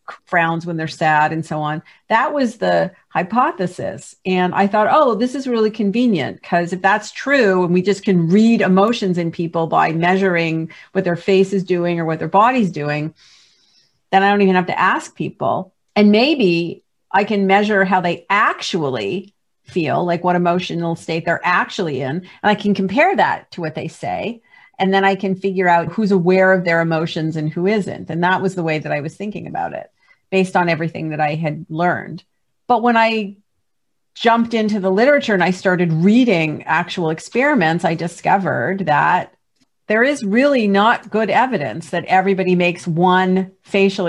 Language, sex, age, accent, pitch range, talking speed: English, female, 50-69, American, 170-205 Hz, 185 wpm